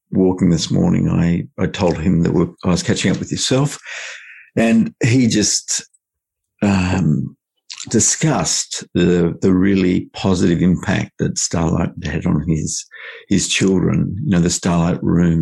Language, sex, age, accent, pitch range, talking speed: English, male, 50-69, Australian, 85-100 Hz, 145 wpm